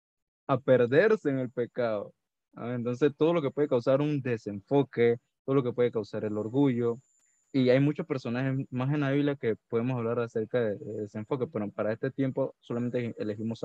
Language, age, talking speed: Spanish, 20-39, 175 wpm